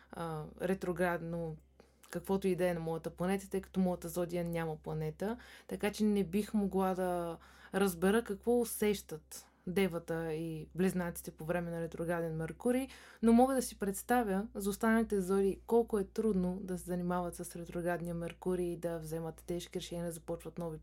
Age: 20-39